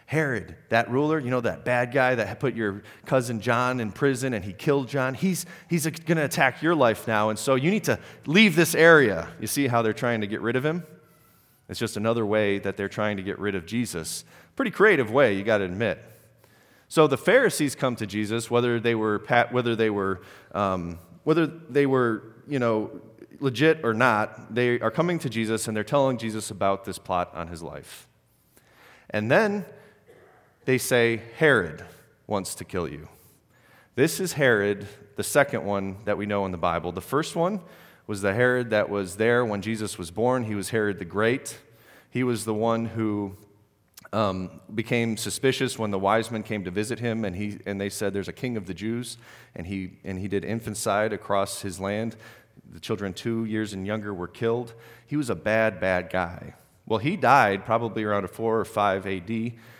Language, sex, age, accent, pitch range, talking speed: English, male, 30-49, American, 100-125 Hz, 200 wpm